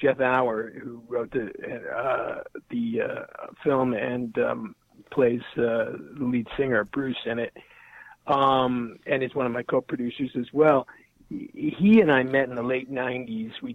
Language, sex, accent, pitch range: English, male, American, 120-165 Hz